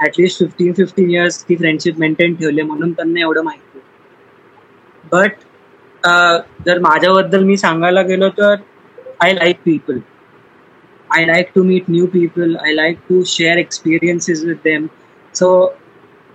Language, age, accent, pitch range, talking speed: Marathi, 20-39, native, 175-210 Hz, 130 wpm